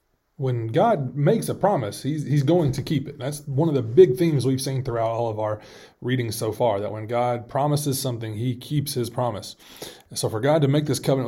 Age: 30-49